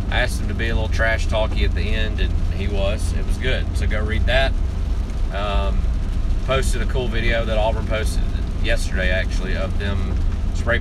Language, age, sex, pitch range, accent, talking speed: English, 30-49, male, 80-95 Hz, American, 195 wpm